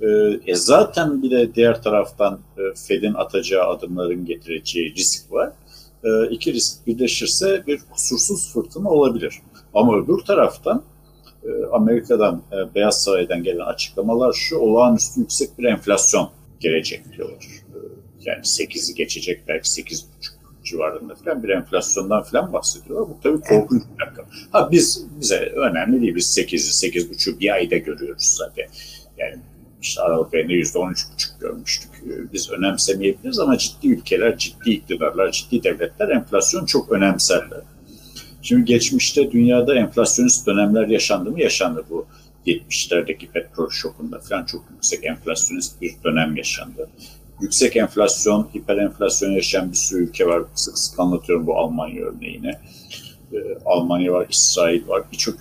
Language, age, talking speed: Turkish, 60-79, 130 wpm